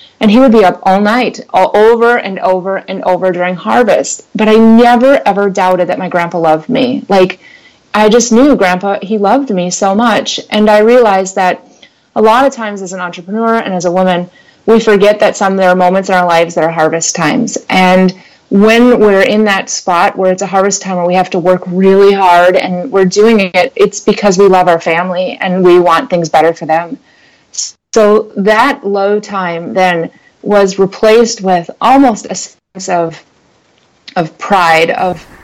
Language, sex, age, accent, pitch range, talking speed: English, female, 30-49, American, 175-210 Hz, 195 wpm